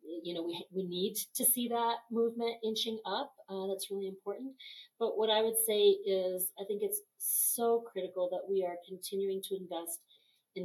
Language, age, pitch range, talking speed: English, 40-59, 165-200 Hz, 185 wpm